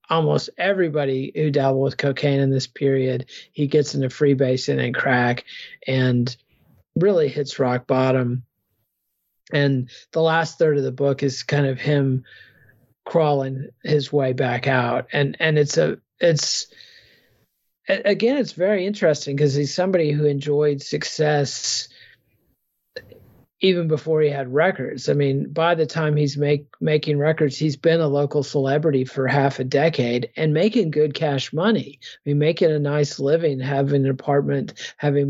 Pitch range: 135-155 Hz